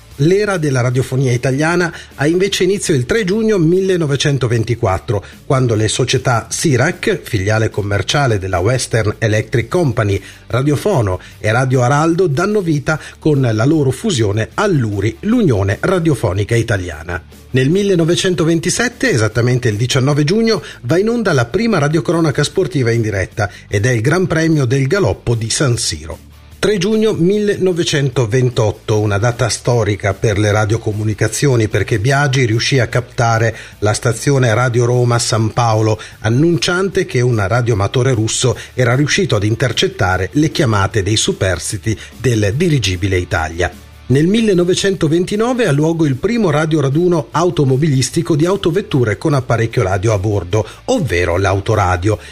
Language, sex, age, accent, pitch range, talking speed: Italian, male, 40-59, native, 110-160 Hz, 130 wpm